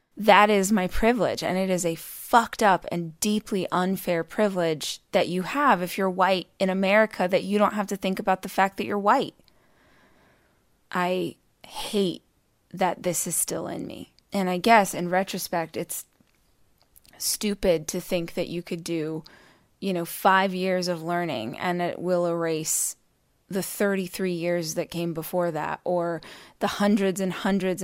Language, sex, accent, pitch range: English, female, American, 170-195 Hz